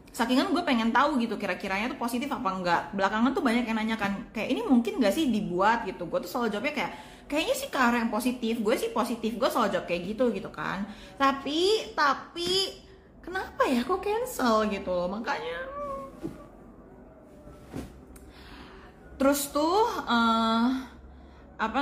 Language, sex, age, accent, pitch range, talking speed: Indonesian, female, 20-39, native, 190-275 Hz, 155 wpm